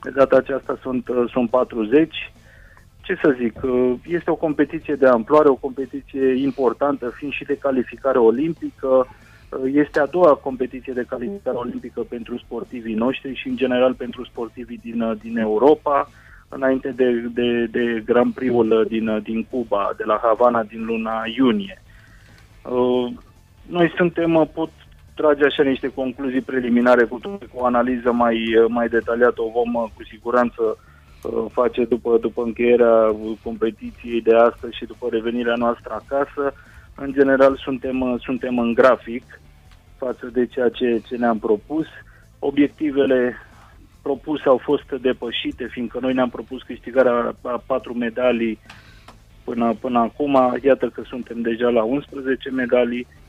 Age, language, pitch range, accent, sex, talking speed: 30-49, Romanian, 115-130 Hz, native, male, 135 wpm